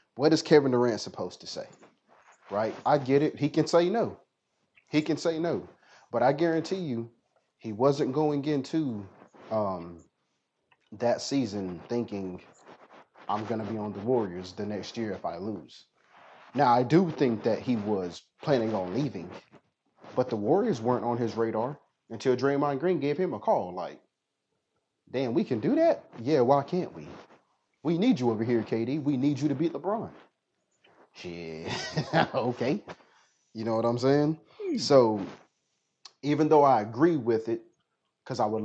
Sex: male